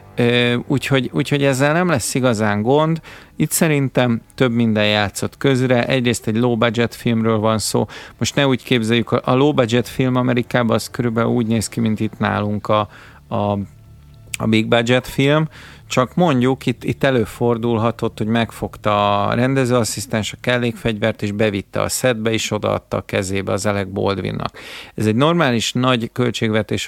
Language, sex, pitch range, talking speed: Hungarian, male, 105-125 Hz, 155 wpm